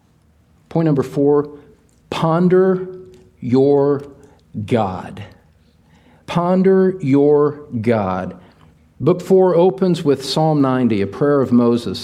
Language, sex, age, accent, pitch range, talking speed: English, male, 50-69, American, 100-150 Hz, 95 wpm